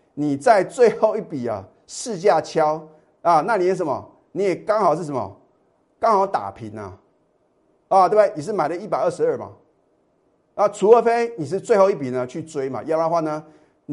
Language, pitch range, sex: Chinese, 130-180 Hz, male